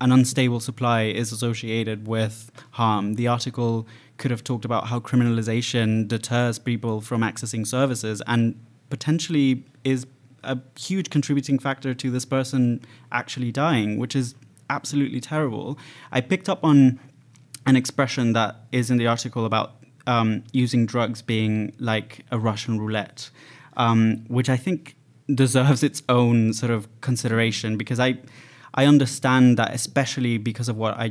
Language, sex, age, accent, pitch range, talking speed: English, male, 20-39, British, 110-130 Hz, 145 wpm